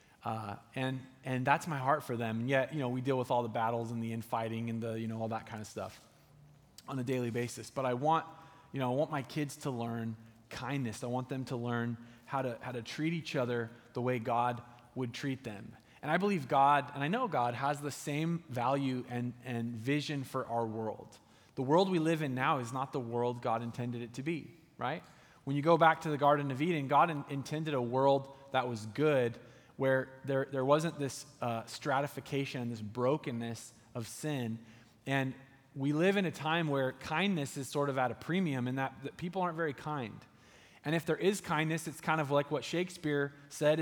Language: English